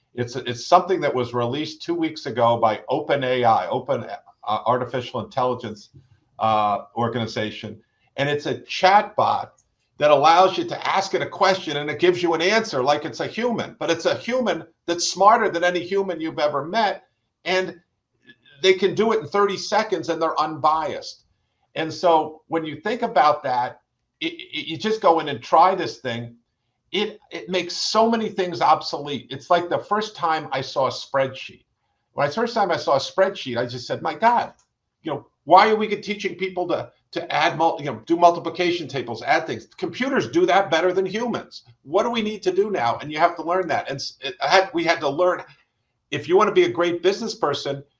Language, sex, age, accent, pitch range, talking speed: English, male, 50-69, American, 135-190 Hz, 205 wpm